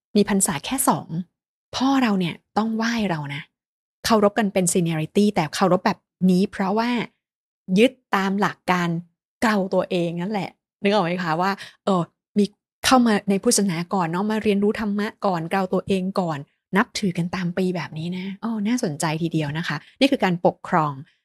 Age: 20-39